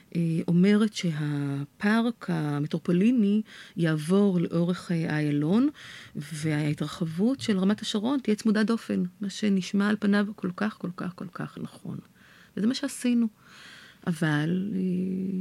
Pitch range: 170-205 Hz